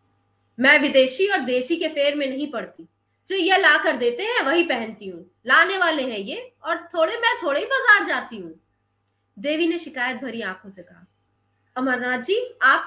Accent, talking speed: native, 175 wpm